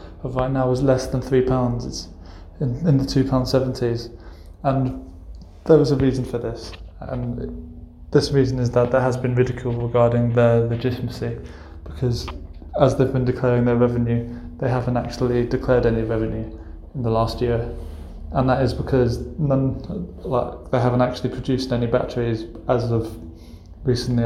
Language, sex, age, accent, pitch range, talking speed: English, male, 20-39, British, 110-125 Hz, 155 wpm